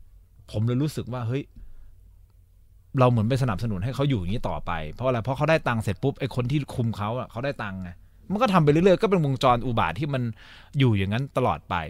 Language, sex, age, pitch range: Thai, male, 20-39, 95-130 Hz